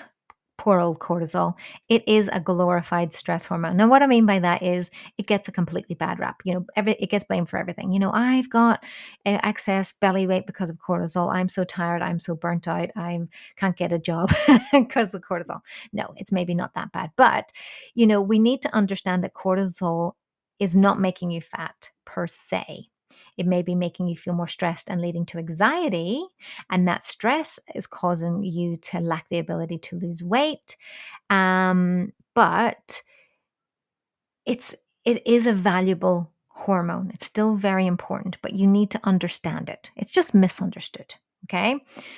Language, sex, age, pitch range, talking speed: English, female, 30-49, 175-215 Hz, 180 wpm